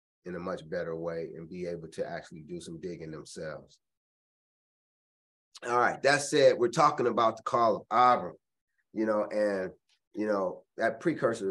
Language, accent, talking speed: English, American, 165 wpm